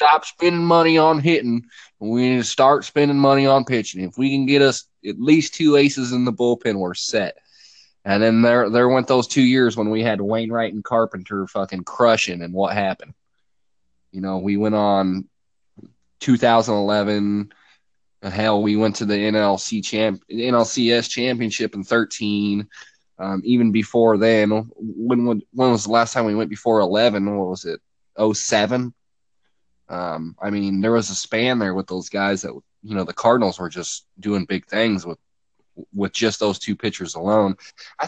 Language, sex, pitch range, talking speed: English, male, 100-125 Hz, 180 wpm